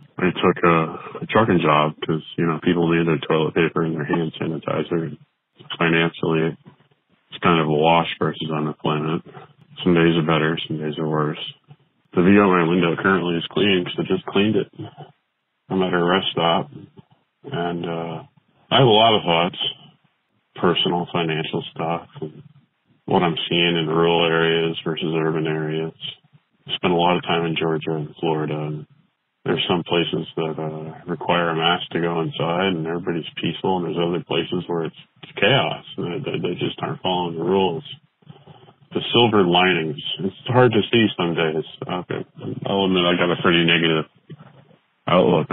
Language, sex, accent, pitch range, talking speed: English, male, American, 80-90 Hz, 175 wpm